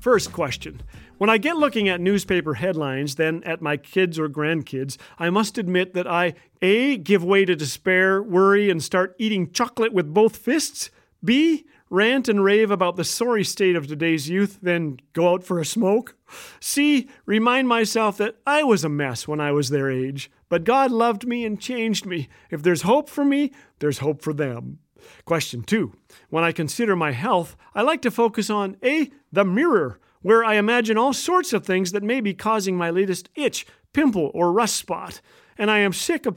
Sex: male